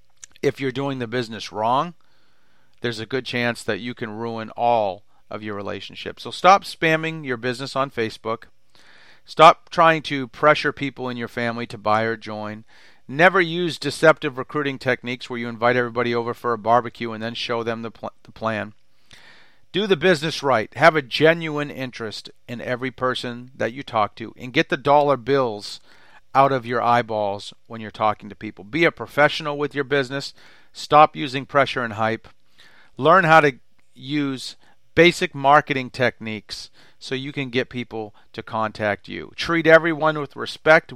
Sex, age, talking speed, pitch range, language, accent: male, 40-59, 170 wpm, 115-150 Hz, English, American